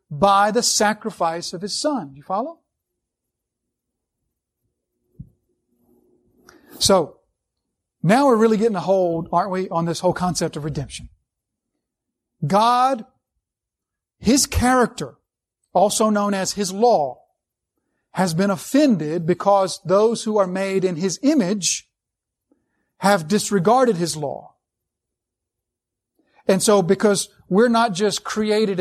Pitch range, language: 180-220 Hz, English